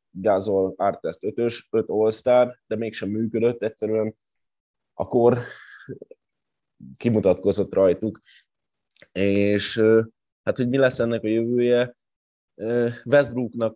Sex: male